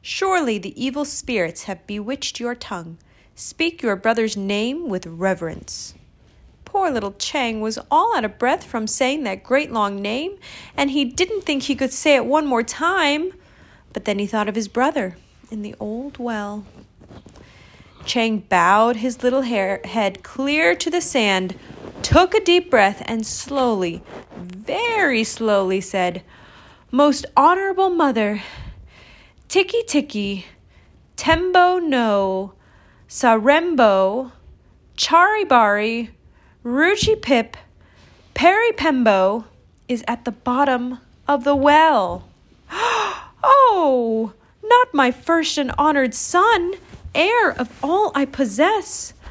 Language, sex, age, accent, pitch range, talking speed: English, female, 30-49, American, 210-305 Hz, 120 wpm